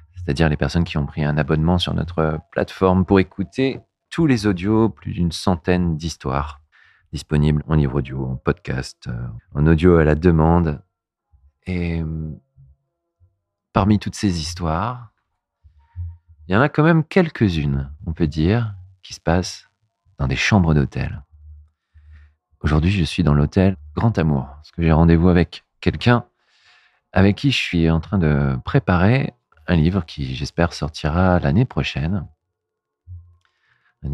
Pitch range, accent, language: 75-95 Hz, French, French